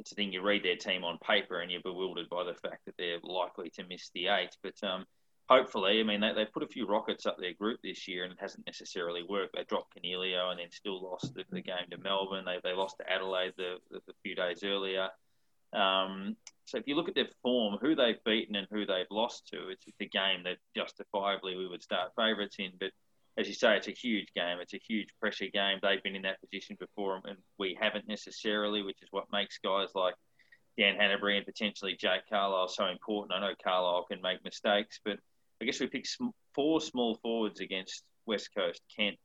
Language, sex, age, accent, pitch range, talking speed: English, male, 20-39, Australian, 95-105 Hz, 220 wpm